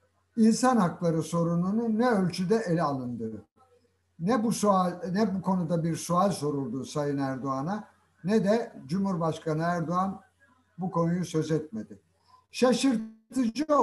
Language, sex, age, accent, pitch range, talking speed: Turkish, male, 60-79, native, 155-230 Hz, 110 wpm